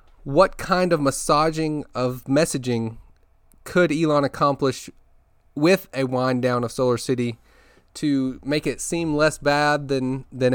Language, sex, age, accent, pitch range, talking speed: English, male, 30-49, American, 120-150 Hz, 135 wpm